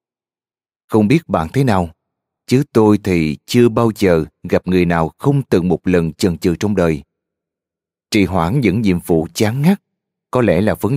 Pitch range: 90-115 Hz